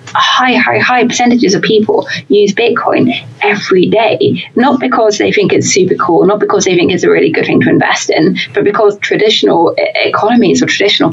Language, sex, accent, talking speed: English, female, British, 190 wpm